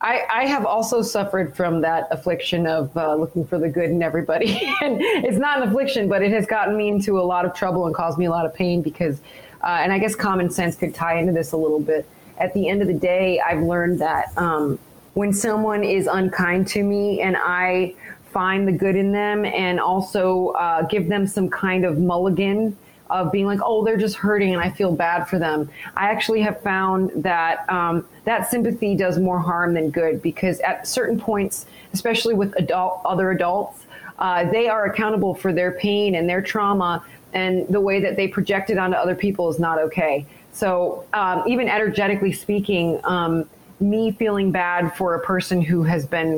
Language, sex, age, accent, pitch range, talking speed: English, female, 30-49, American, 175-205 Hz, 205 wpm